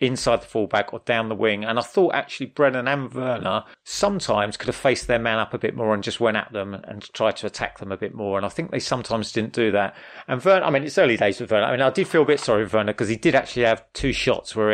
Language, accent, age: English, British, 30-49